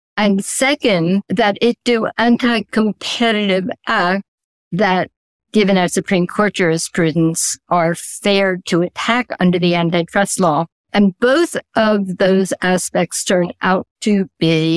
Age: 60-79